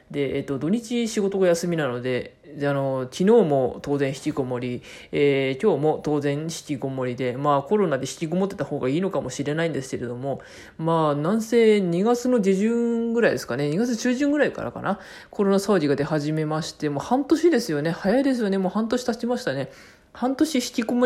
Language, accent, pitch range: Japanese, native, 145-225 Hz